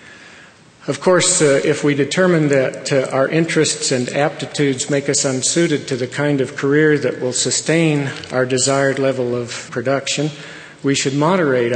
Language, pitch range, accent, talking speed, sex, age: English, 125-150 Hz, American, 160 wpm, male, 50-69